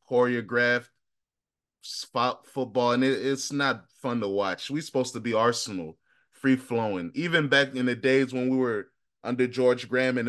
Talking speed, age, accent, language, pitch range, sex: 170 wpm, 20-39, American, English, 115-135 Hz, male